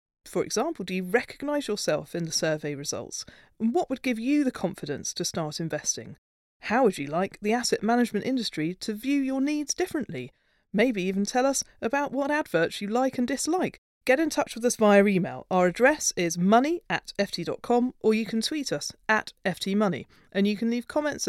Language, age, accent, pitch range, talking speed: English, 40-59, British, 170-245 Hz, 195 wpm